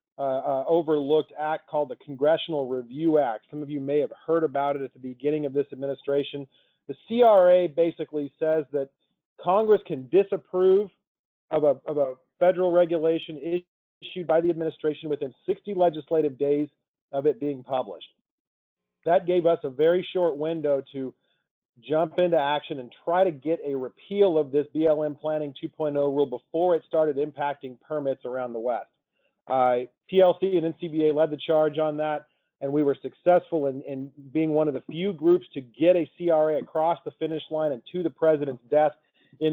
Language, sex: English, male